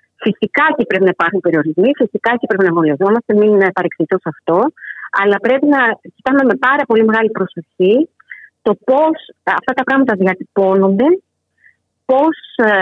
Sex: female